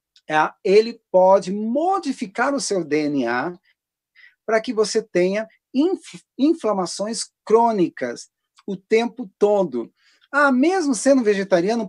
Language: Portuguese